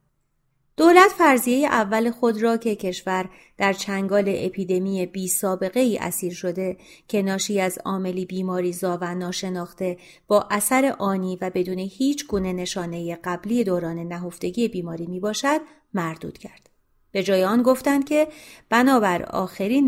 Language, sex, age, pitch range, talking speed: Persian, female, 30-49, 185-245 Hz, 135 wpm